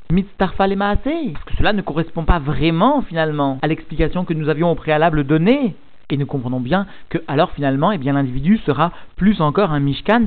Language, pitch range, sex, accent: French, 155-205 Hz, male, French